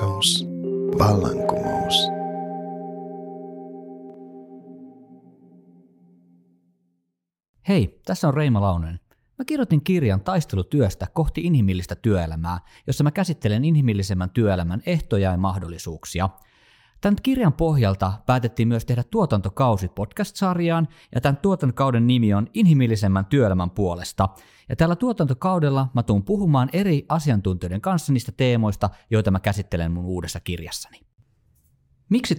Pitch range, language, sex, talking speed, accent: 95-145 Hz, Finnish, male, 95 wpm, native